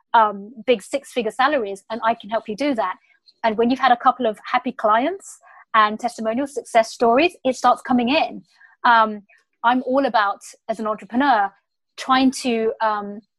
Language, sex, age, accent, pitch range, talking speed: English, female, 20-39, British, 220-265 Hz, 175 wpm